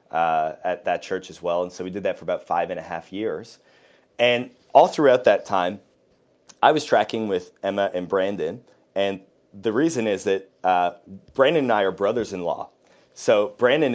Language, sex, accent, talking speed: English, male, American, 190 wpm